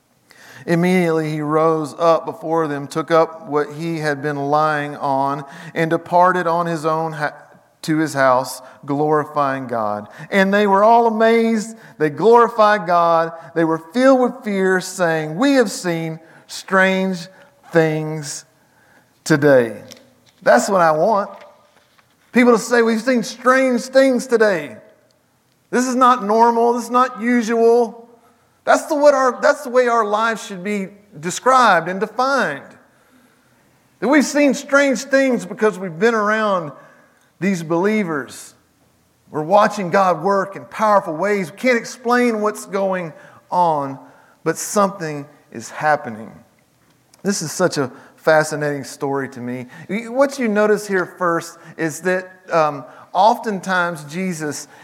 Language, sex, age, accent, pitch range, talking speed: English, male, 40-59, American, 155-225 Hz, 135 wpm